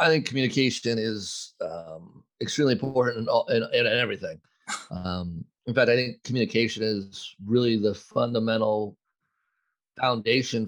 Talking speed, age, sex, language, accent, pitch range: 130 wpm, 30-49, male, English, American, 100-120 Hz